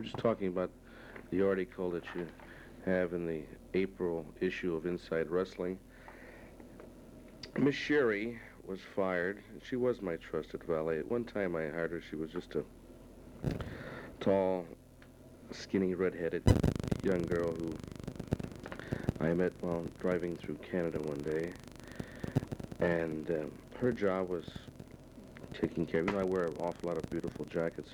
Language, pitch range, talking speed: English, 85-95 Hz, 140 wpm